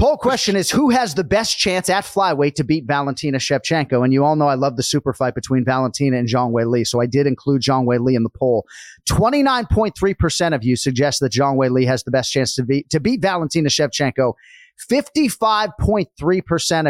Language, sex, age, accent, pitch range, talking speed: English, male, 30-49, American, 135-175 Hz, 200 wpm